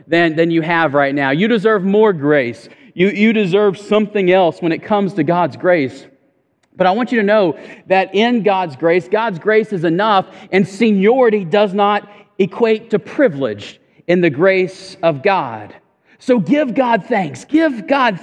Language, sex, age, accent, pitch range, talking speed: English, male, 40-59, American, 165-215 Hz, 175 wpm